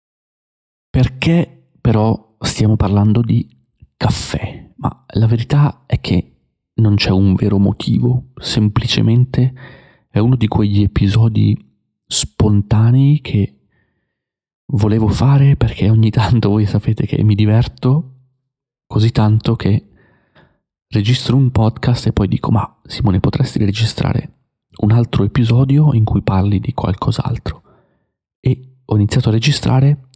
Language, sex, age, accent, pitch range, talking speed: Italian, male, 30-49, native, 105-130 Hz, 120 wpm